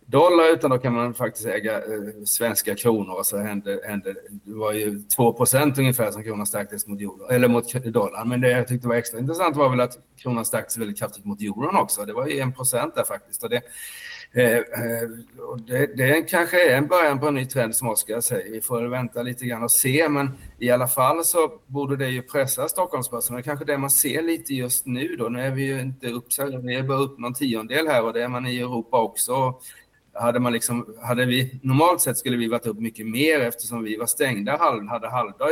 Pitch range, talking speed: 115-140 Hz, 225 wpm